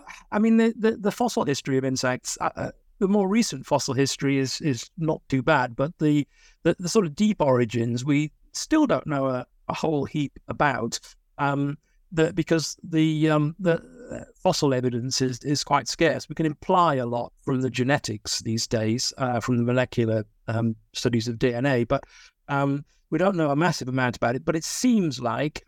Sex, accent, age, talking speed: male, British, 50-69, 190 wpm